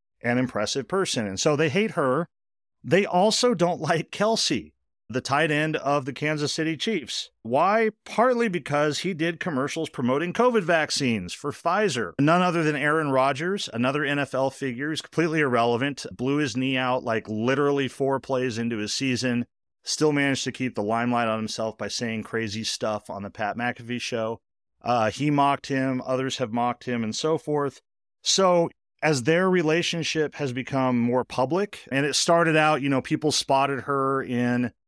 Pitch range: 115-155 Hz